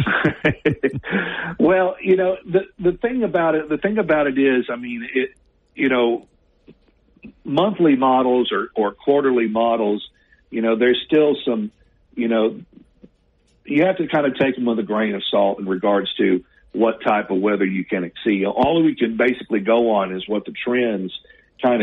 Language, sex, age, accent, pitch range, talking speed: English, male, 50-69, American, 105-130 Hz, 175 wpm